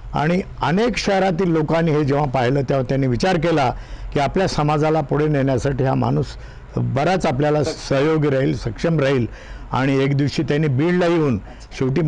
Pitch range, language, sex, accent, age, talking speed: 130-165 Hz, Marathi, male, native, 50-69, 160 wpm